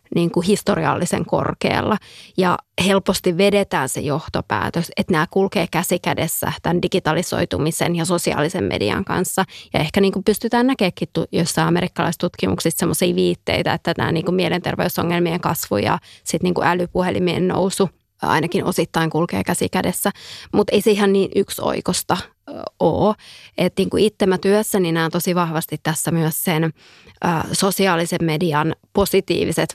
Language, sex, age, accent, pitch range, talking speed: Finnish, female, 20-39, native, 160-190 Hz, 125 wpm